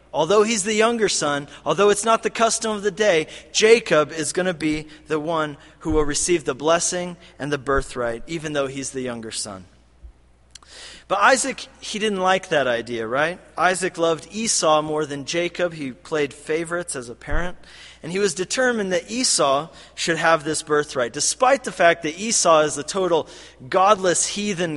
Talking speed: 180 wpm